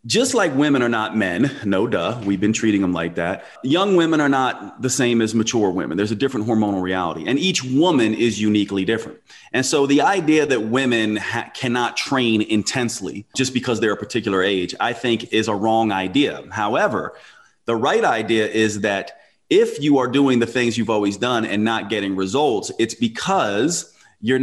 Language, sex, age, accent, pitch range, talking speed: English, male, 30-49, American, 105-130 Hz, 190 wpm